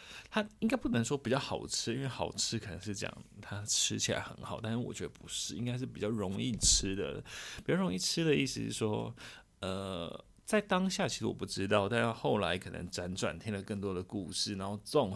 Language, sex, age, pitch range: Chinese, male, 30-49, 95-125 Hz